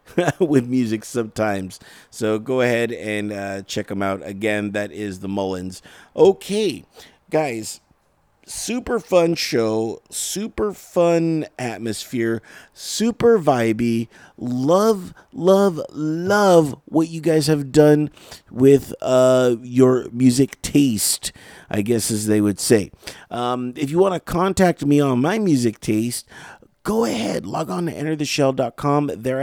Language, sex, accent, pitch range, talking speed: English, male, American, 120-160 Hz, 130 wpm